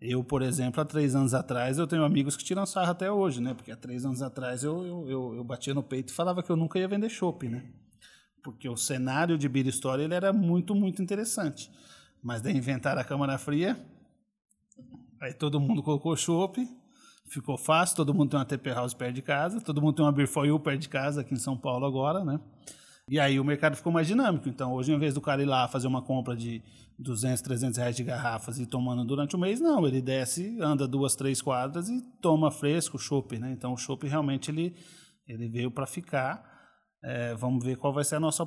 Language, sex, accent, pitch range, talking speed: Portuguese, male, Brazilian, 125-155 Hz, 225 wpm